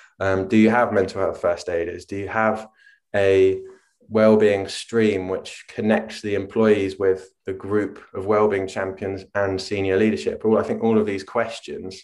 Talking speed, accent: 170 wpm, British